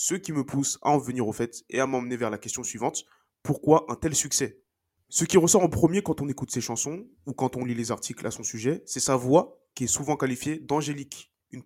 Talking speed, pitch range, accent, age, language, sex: 255 wpm, 125-155 Hz, French, 20-39, French, male